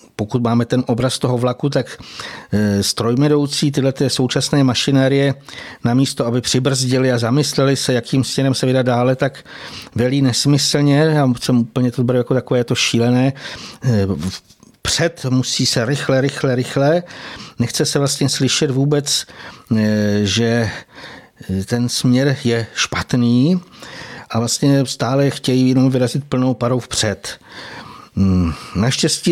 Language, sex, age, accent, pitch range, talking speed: Czech, male, 60-79, native, 115-135 Hz, 125 wpm